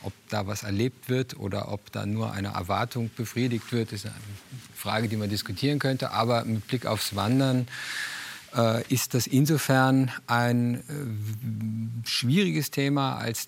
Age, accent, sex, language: 50-69, German, male, German